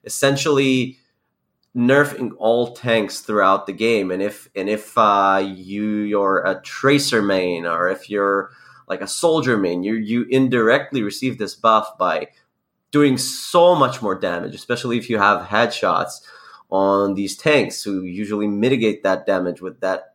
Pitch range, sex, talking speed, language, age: 105-135 Hz, male, 150 wpm, English, 30-49